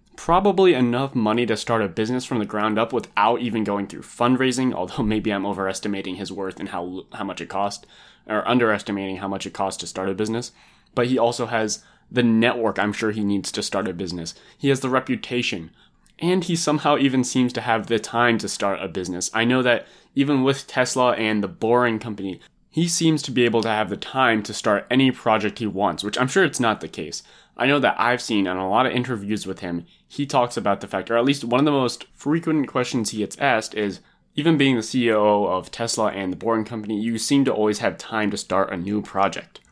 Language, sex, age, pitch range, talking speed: English, male, 20-39, 100-130 Hz, 230 wpm